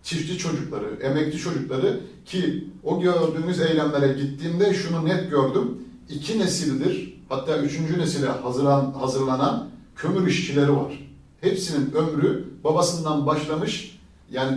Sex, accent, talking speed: male, native, 110 wpm